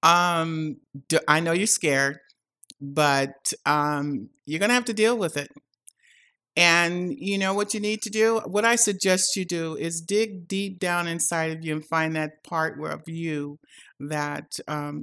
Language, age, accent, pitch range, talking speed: English, 50-69, American, 150-180 Hz, 170 wpm